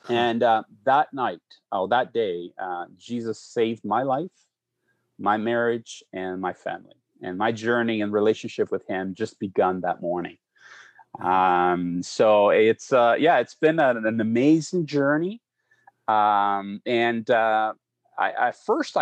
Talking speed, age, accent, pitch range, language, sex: 140 wpm, 30-49, American, 100-125 Hz, English, male